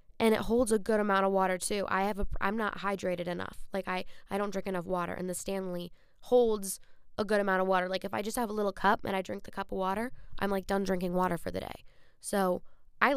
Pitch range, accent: 190-225 Hz, American